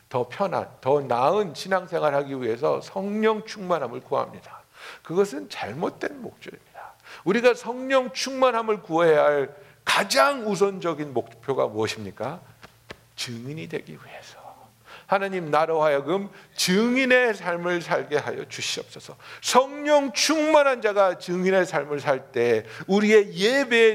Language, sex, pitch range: Korean, male, 190-275 Hz